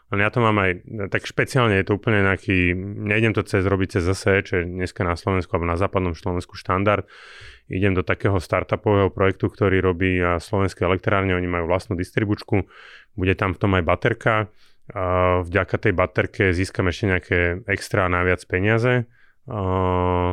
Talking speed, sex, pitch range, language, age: 165 wpm, male, 90-105 Hz, Slovak, 30-49